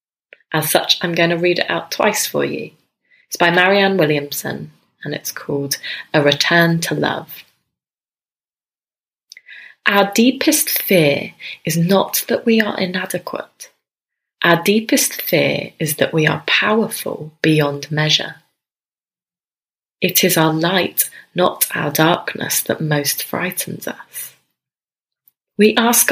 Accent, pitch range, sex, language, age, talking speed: British, 155-215 Hz, female, English, 20-39, 125 wpm